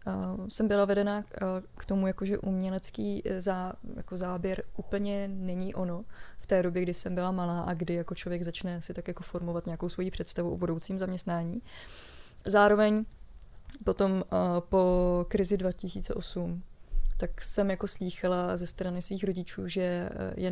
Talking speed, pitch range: 160 wpm, 180-200 Hz